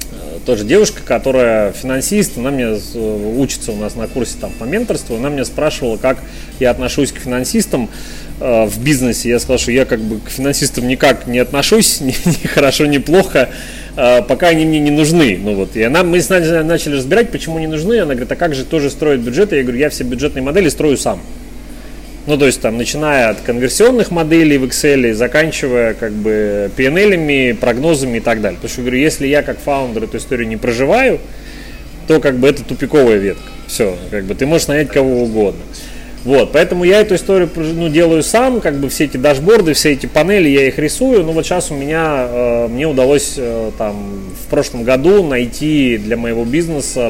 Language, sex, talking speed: Russian, male, 190 wpm